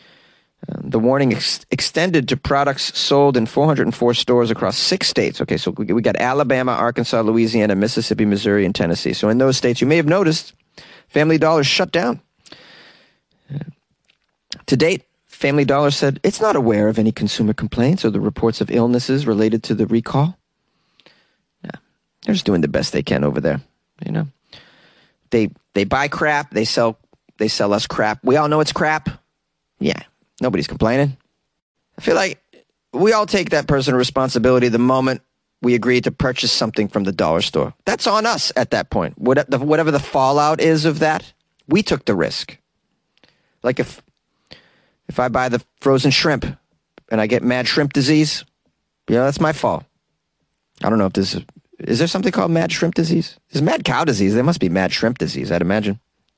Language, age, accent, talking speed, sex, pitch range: English, 30-49, American, 180 wpm, male, 115-155 Hz